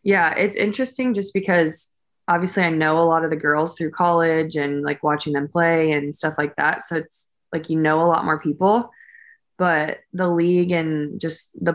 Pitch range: 145-170 Hz